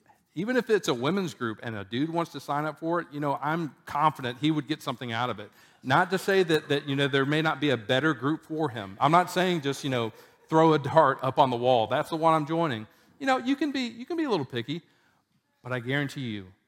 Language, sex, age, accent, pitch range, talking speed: English, male, 40-59, American, 115-150 Hz, 270 wpm